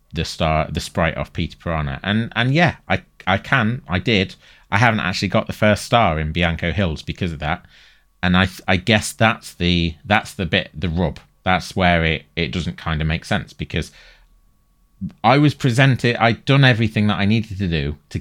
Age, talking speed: 30-49, 200 wpm